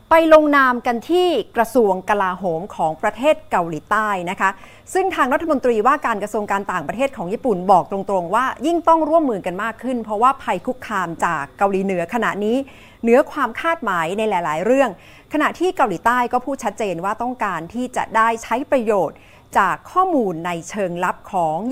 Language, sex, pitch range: Thai, female, 195-275 Hz